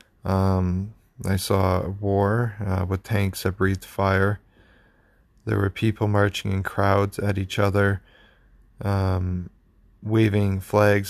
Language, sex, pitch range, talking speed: English, male, 95-105 Hz, 125 wpm